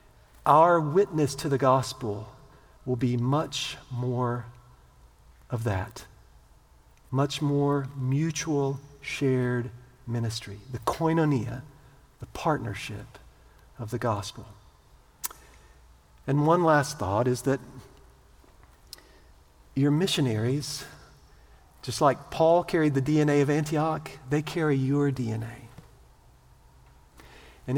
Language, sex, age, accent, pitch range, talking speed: English, male, 50-69, American, 105-145 Hz, 95 wpm